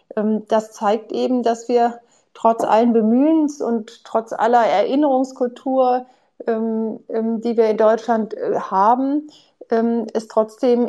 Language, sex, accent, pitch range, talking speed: German, female, German, 215-245 Hz, 105 wpm